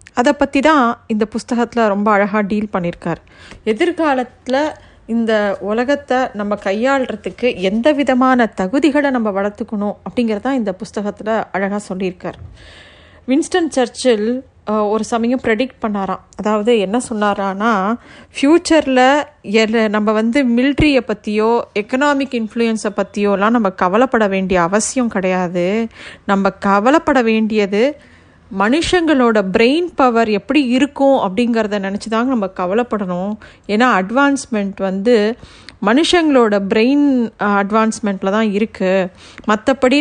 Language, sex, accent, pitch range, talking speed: Tamil, female, native, 200-255 Hz, 100 wpm